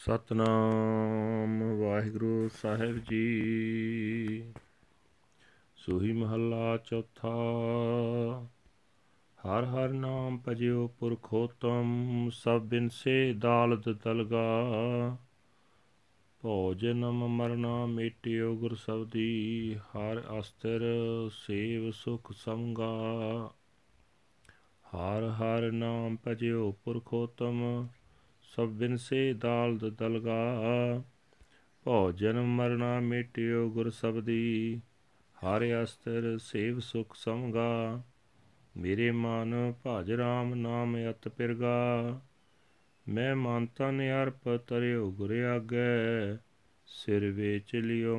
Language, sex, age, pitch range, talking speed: Punjabi, male, 40-59, 110-120 Hz, 75 wpm